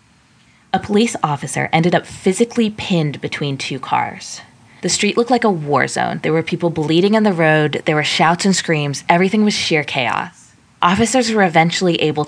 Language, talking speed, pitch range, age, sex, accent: English, 180 wpm, 140-175 Hz, 20-39, female, American